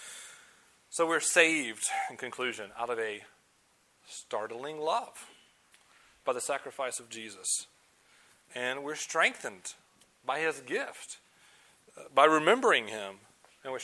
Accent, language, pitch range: American, English, 110-135 Hz